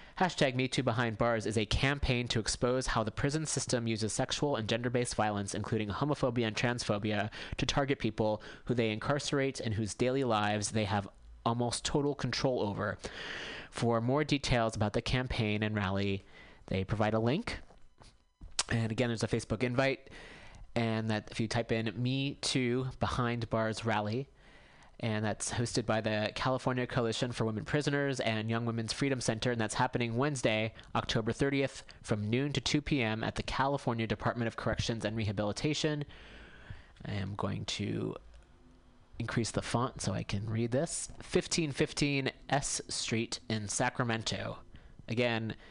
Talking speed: 155 wpm